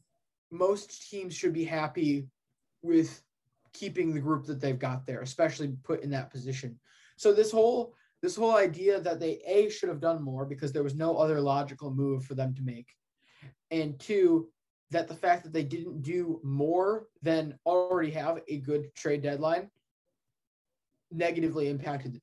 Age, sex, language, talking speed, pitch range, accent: 20-39, male, English, 165 wpm, 140-175 Hz, American